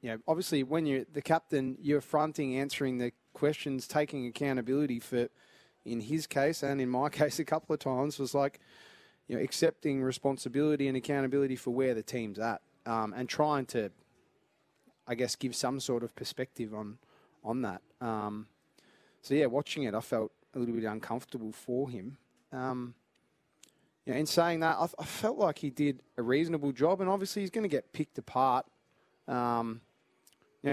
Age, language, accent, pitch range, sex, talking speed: 20-39, English, Australian, 120-145 Hz, male, 175 wpm